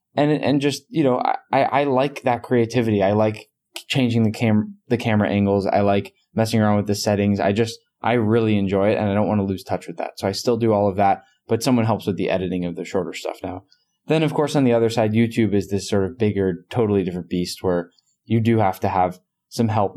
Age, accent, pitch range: 10-29, American, 95-115 Hz